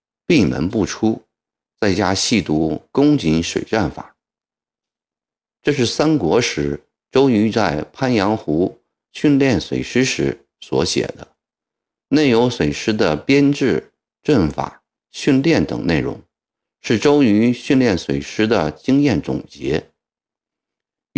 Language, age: Chinese, 50-69